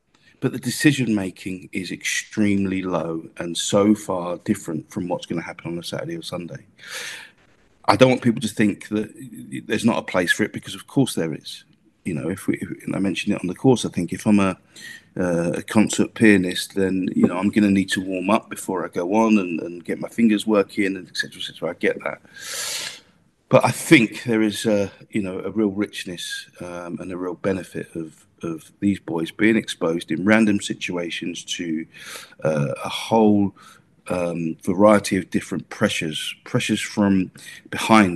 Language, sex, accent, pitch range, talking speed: English, male, British, 90-110 Hz, 200 wpm